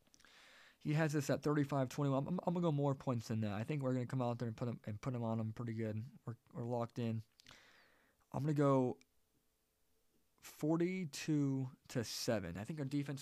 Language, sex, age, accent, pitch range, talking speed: English, male, 20-39, American, 110-140 Hz, 210 wpm